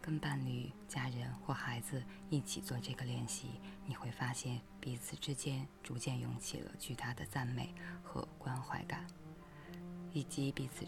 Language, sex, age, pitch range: Chinese, female, 20-39, 120-145 Hz